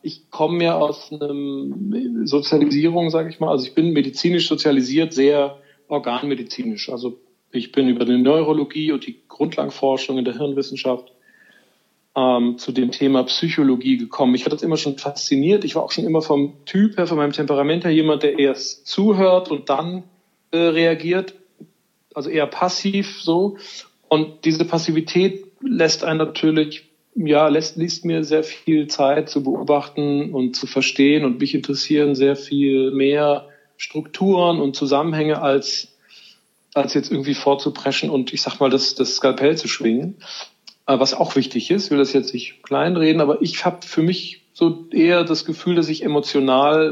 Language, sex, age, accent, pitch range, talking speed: German, male, 40-59, German, 135-165 Hz, 160 wpm